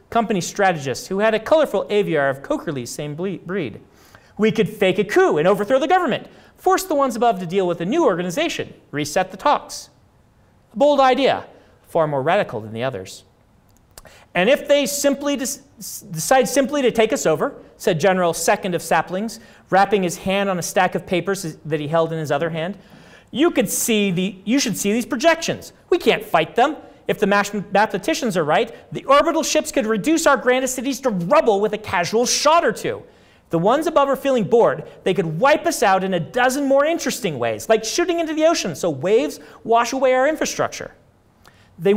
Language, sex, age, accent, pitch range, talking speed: English, male, 40-59, American, 175-275 Hz, 195 wpm